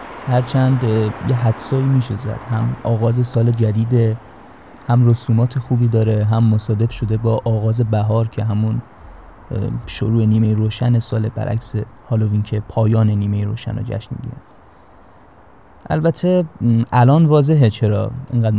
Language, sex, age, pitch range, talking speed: Persian, male, 20-39, 110-125 Hz, 130 wpm